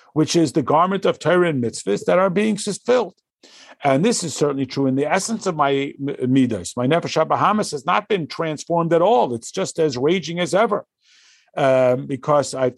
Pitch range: 130-180 Hz